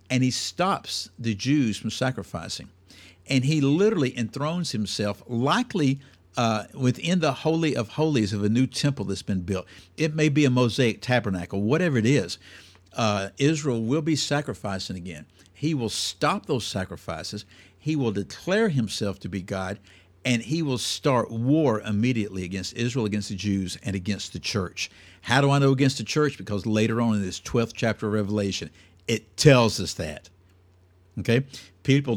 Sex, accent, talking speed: male, American, 170 wpm